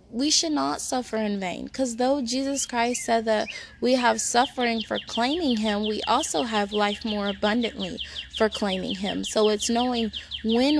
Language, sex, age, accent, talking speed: English, female, 10-29, American, 170 wpm